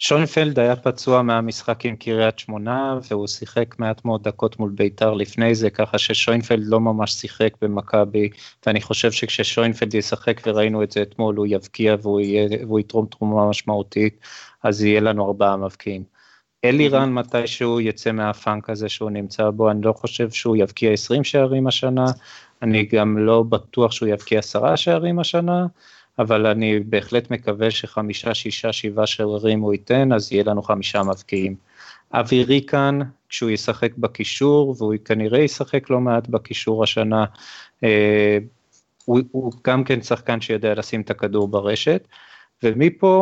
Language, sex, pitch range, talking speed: Hebrew, male, 105-125 Hz, 150 wpm